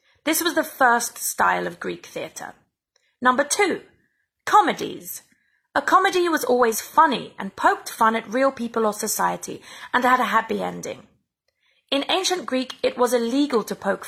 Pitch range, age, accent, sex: 210-290 Hz, 30-49, British, female